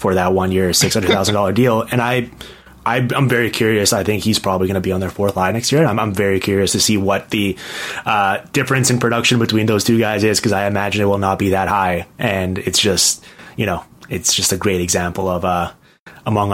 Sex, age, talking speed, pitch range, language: male, 20-39, 230 wpm, 95-120 Hz, English